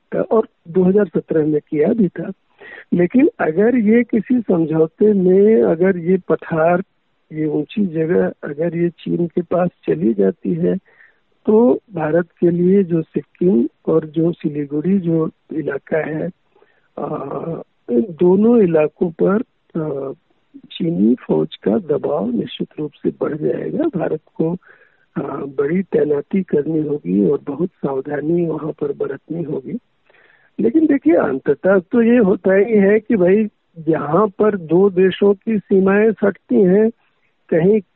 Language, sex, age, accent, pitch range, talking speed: Hindi, male, 60-79, native, 165-215 Hz, 130 wpm